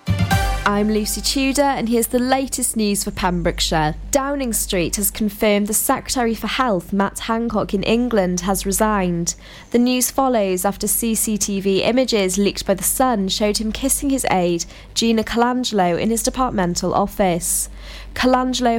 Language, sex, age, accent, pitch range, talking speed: English, female, 20-39, British, 195-245 Hz, 145 wpm